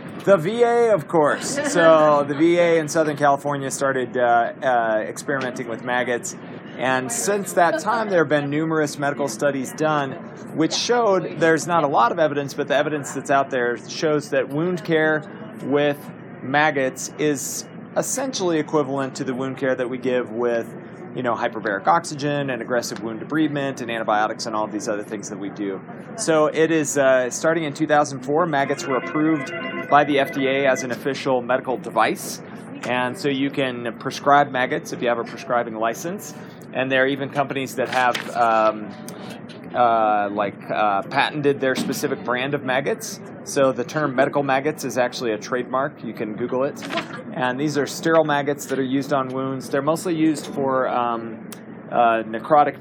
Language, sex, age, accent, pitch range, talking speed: English, male, 30-49, American, 125-160 Hz, 175 wpm